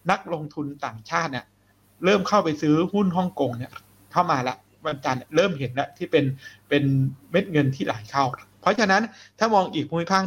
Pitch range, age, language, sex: 125-175 Hz, 60-79, Thai, male